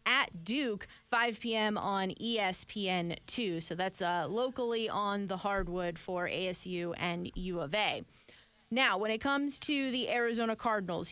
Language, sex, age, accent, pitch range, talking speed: English, female, 20-39, American, 185-230 Hz, 150 wpm